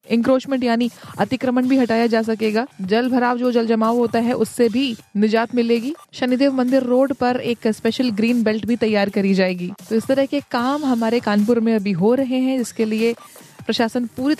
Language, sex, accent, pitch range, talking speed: Hindi, female, native, 225-260 Hz, 190 wpm